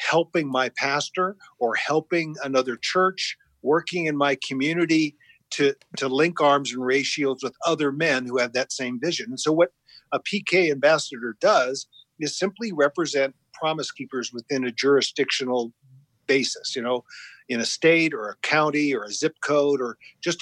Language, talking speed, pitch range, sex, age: English, 165 wpm, 130-165 Hz, male, 50-69